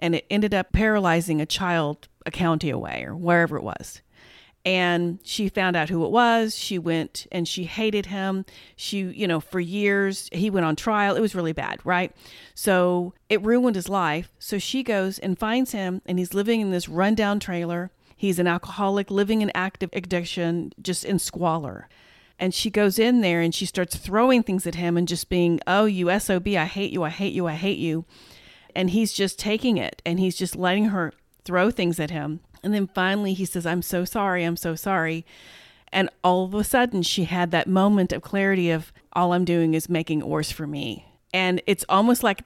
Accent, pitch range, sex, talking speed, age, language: American, 170-210 Hz, female, 205 wpm, 40-59, English